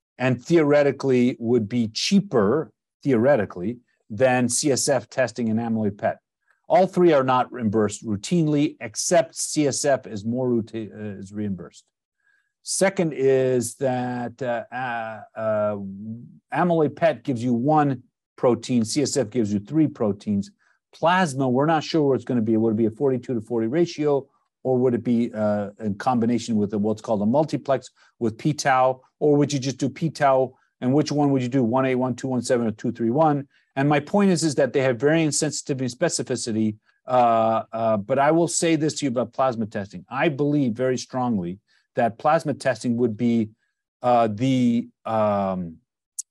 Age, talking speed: 50-69, 160 wpm